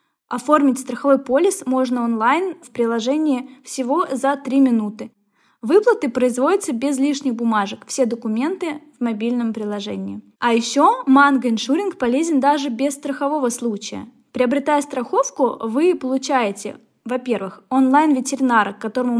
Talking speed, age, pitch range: 120 wpm, 20-39, 225-275 Hz